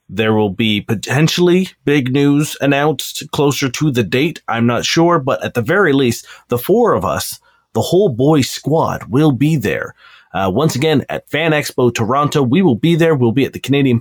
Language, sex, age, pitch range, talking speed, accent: English, male, 30-49, 120-160 Hz, 195 wpm, American